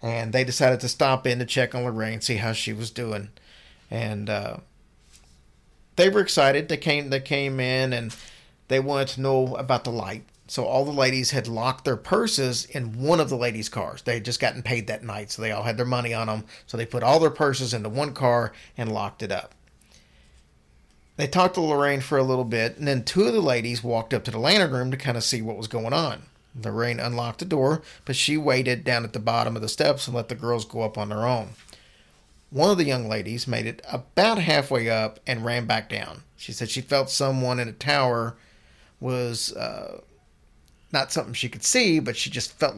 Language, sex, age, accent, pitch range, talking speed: English, male, 40-59, American, 110-130 Hz, 225 wpm